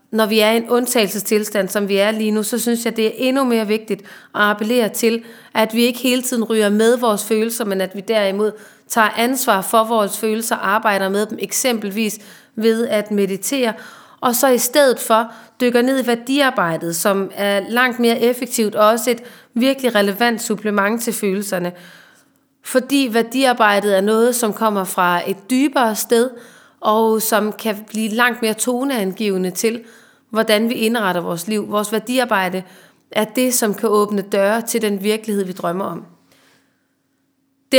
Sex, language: female, Danish